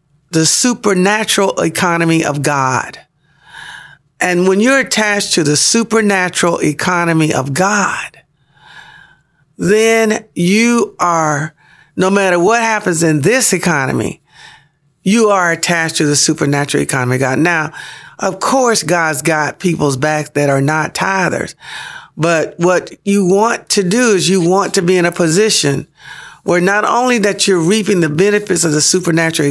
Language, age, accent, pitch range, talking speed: English, 50-69, American, 145-180 Hz, 140 wpm